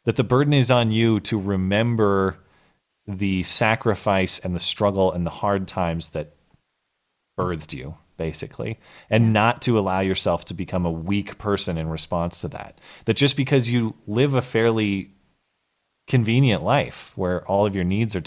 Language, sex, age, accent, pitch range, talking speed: English, male, 30-49, American, 90-115 Hz, 165 wpm